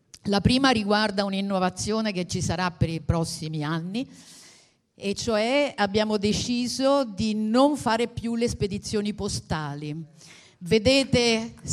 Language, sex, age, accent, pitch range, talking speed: Italian, female, 50-69, native, 185-245 Hz, 120 wpm